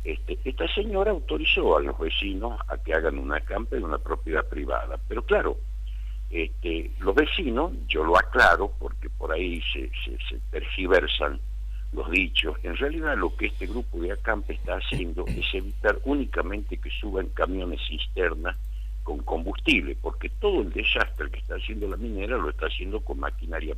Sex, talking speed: male, 165 wpm